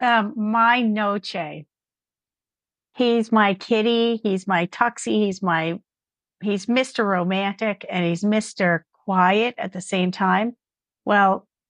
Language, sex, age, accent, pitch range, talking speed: English, female, 50-69, American, 185-245 Hz, 120 wpm